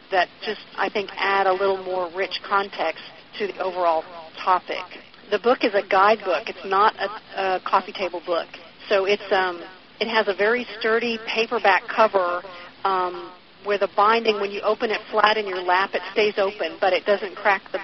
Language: English